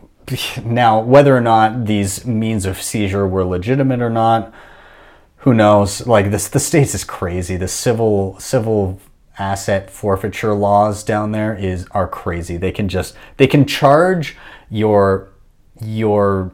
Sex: male